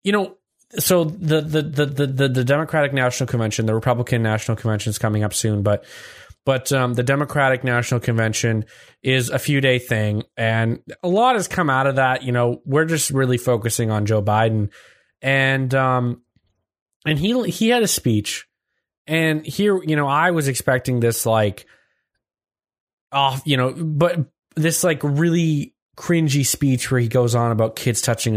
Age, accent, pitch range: 20-39, American, 120-155 Hz